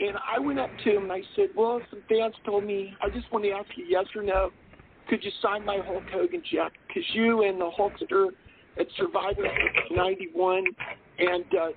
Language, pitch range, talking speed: English, 200-275 Hz, 210 wpm